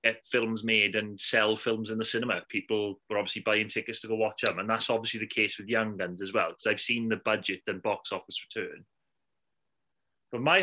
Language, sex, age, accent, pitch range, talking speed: English, male, 30-49, British, 110-145 Hz, 220 wpm